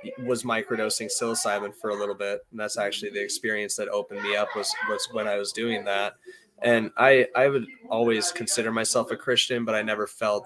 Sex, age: male, 20-39